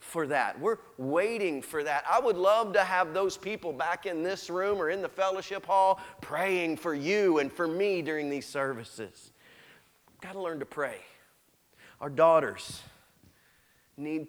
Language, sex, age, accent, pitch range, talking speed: English, male, 30-49, American, 125-165 Hz, 160 wpm